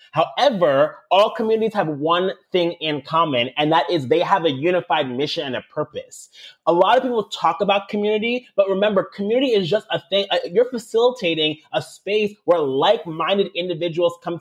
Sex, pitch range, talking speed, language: male, 170-225 Hz, 175 wpm, English